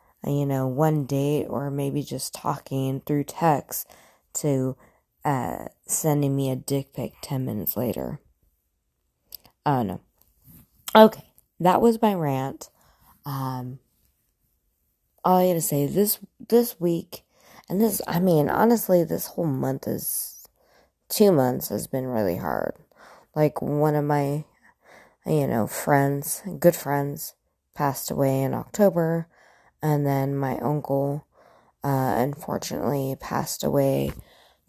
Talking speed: 125 wpm